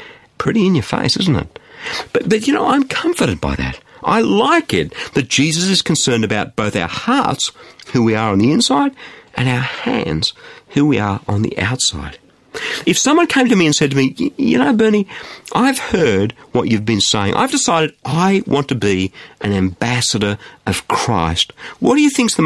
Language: English